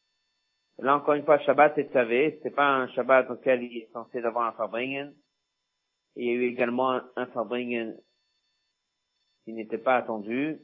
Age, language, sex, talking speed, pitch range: 50-69, French, male, 165 wpm, 115-140 Hz